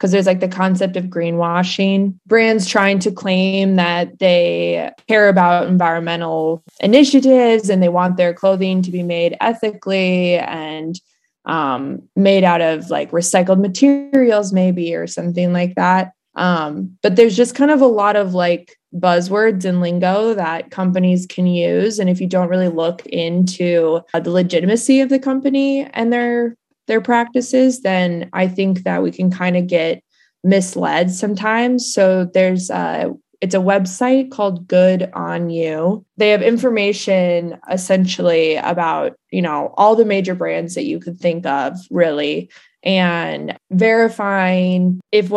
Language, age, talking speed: English, 20-39, 150 wpm